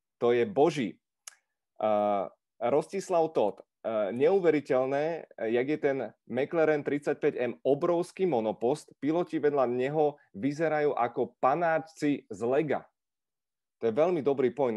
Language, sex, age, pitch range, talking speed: Czech, male, 30-49, 115-155 Hz, 115 wpm